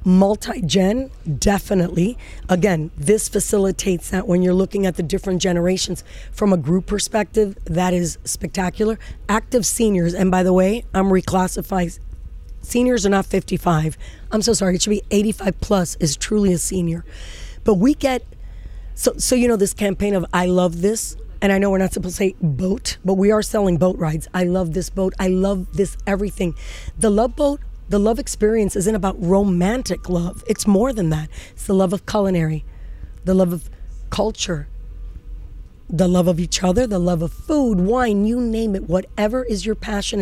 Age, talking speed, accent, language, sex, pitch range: 30-49, 180 wpm, American, English, female, 180-210 Hz